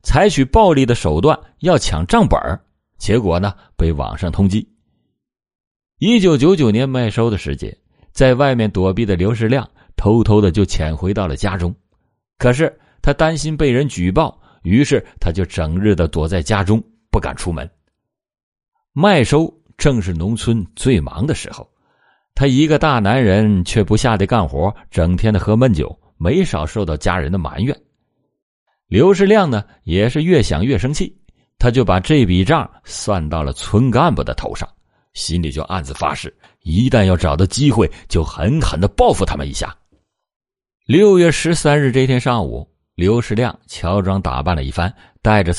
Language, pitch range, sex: Chinese, 90-125 Hz, male